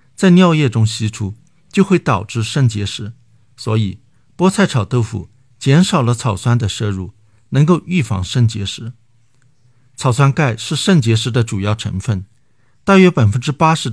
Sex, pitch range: male, 110-135 Hz